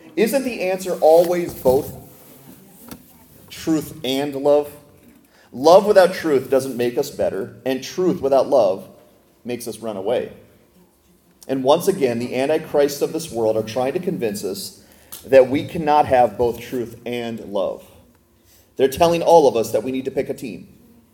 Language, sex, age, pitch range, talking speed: English, male, 30-49, 115-155 Hz, 160 wpm